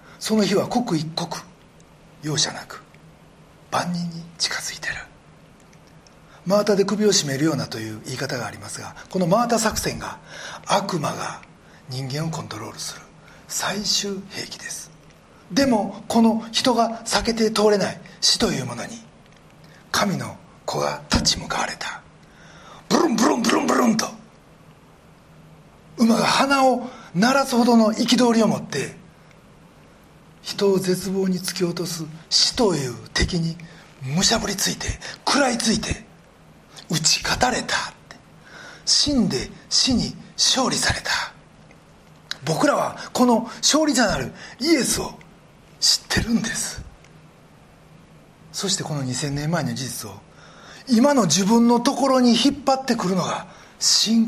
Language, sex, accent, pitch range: Japanese, male, native, 170-230 Hz